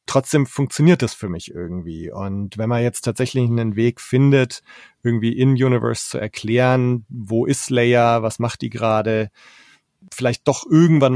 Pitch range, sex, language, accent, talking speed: 115-130 Hz, male, German, German, 155 wpm